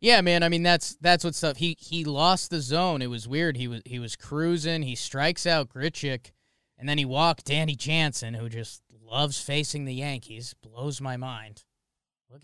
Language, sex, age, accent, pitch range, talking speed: English, male, 20-39, American, 120-160 Hz, 200 wpm